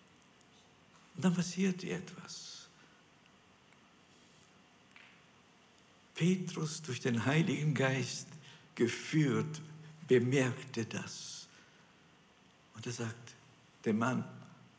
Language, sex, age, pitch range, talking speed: German, male, 60-79, 140-185 Hz, 70 wpm